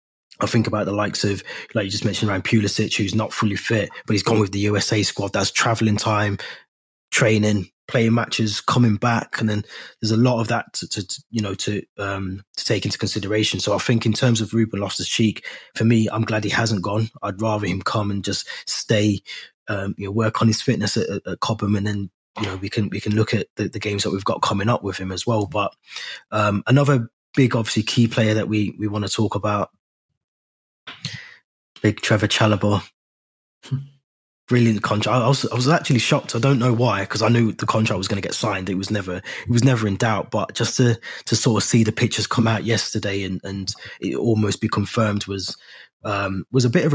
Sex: male